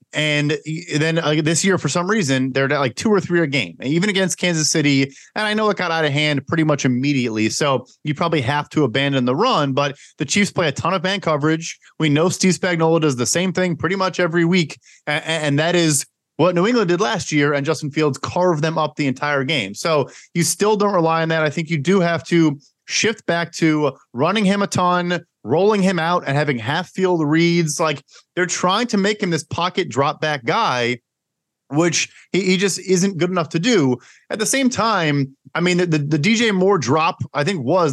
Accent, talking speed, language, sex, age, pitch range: American, 225 wpm, English, male, 30-49, 145-180 Hz